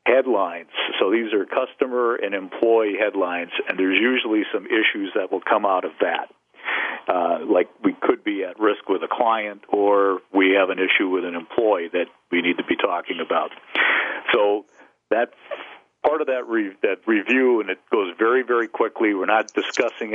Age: 50-69